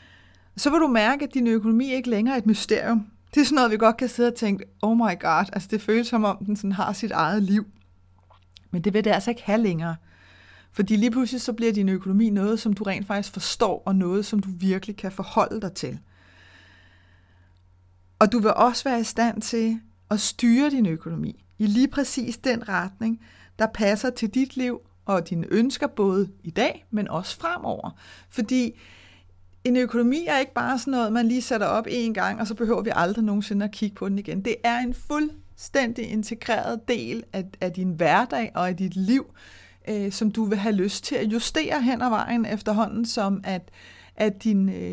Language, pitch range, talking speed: Danish, 185-235 Hz, 200 wpm